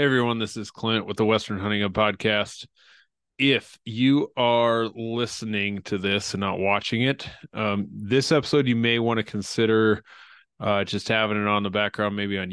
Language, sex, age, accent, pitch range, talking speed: English, male, 20-39, American, 100-115 Hz, 175 wpm